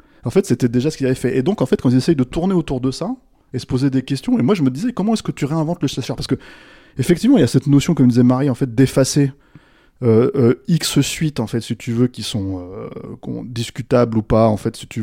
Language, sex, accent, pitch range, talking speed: French, male, French, 120-155 Hz, 285 wpm